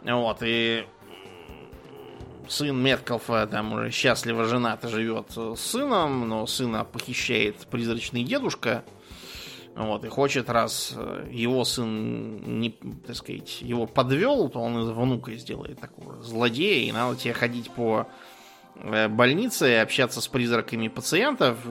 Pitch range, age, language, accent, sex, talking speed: 110-130 Hz, 20-39, Russian, native, male, 120 wpm